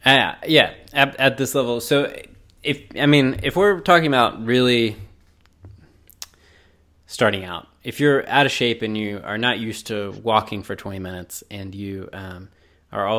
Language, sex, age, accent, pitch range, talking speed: English, male, 20-39, American, 100-115 Hz, 175 wpm